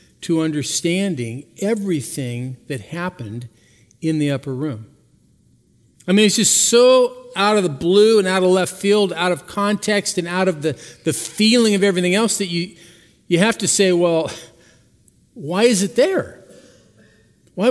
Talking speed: 160 wpm